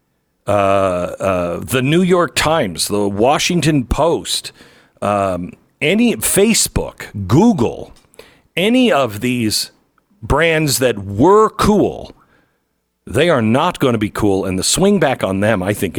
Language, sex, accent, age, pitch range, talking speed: English, male, American, 50-69, 105-160 Hz, 130 wpm